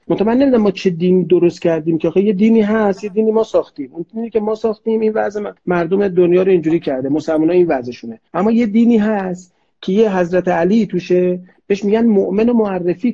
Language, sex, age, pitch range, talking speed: Persian, male, 40-59, 175-235 Hz, 195 wpm